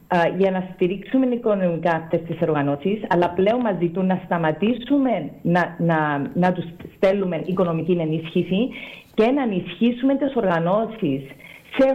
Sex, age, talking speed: female, 40-59, 130 wpm